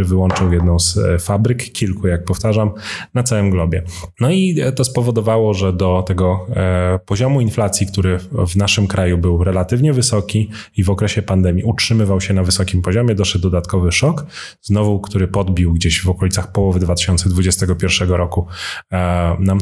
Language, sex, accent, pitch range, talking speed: Polish, male, native, 90-110 Hz, 145 wpm